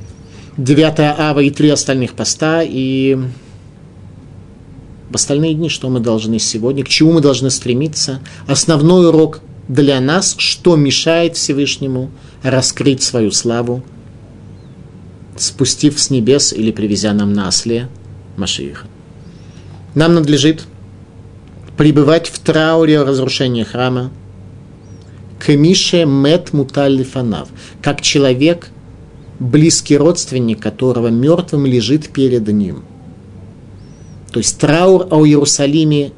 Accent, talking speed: native, 105 wpm